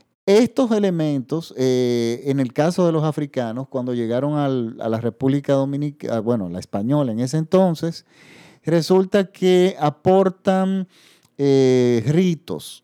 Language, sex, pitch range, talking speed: Spanish, male, 135-175 Hz, 125 wpm